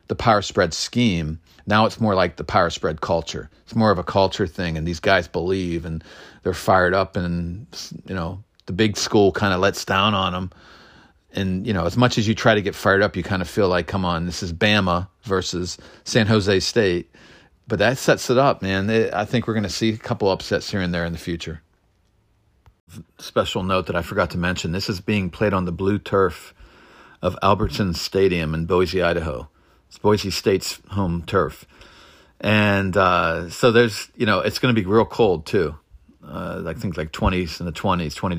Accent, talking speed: American, 210 wpm